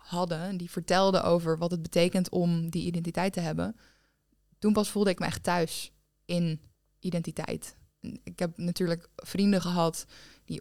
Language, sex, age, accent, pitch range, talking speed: Dutch, female, 20-39, Dutch, 170-190 Hz, 155 wpm